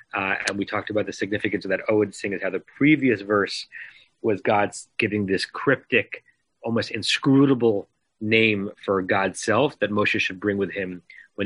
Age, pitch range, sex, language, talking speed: 30-49, 100-125 Hz, male, English, 175 wpm